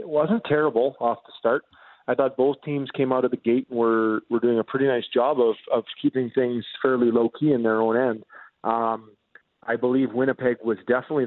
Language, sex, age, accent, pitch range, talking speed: English, male, 40-59, American, 120-145 Hz, 215 wpm